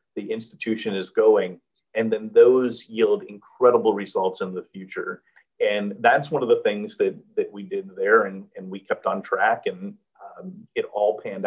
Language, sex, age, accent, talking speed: English, male, 40-59, American, 185 wpm